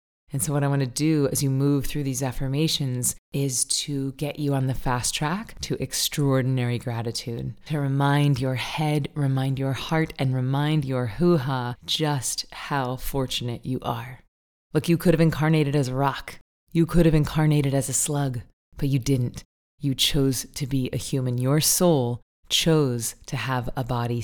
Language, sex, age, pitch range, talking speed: English, female, 20-39, 130-145 Hz, 175 wpm